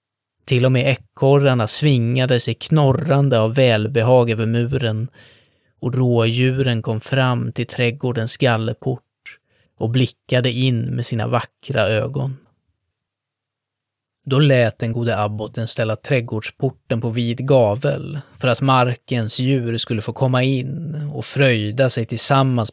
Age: 20-39